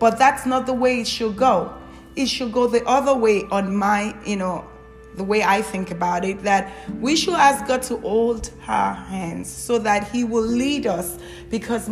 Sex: female